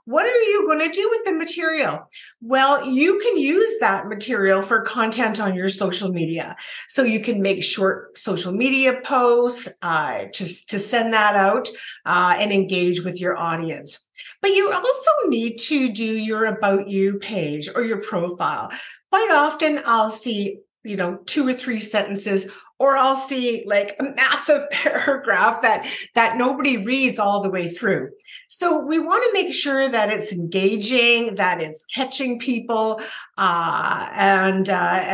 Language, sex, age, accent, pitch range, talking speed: English, female, 50-69, American, 200-290 Hz, 165 wpm